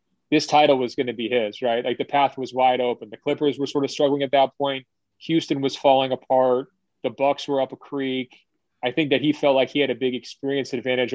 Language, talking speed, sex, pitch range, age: English, 240 wpm, male, 125-145 Hz, 30-49